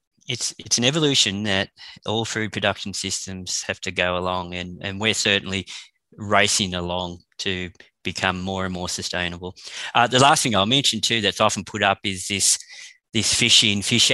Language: English